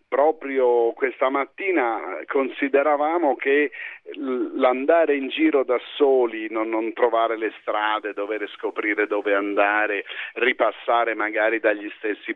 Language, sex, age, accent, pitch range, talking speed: Italian, male, 50-69, native, 110-160 Hz, 110 wpm